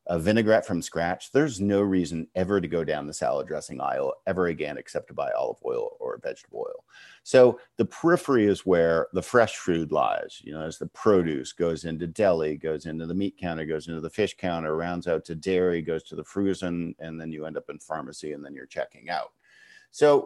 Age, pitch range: 50-69, 85-110 Hz